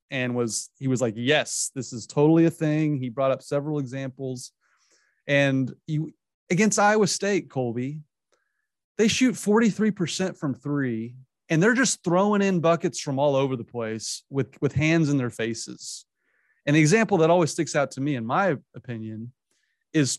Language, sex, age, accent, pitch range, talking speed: English, male, 30-49, American, 120-155 Hz, 165 wpm